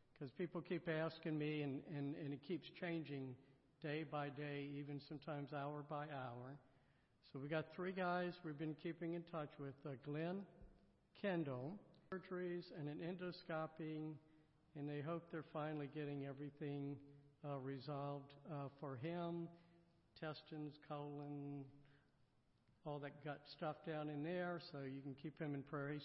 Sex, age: male, 60-79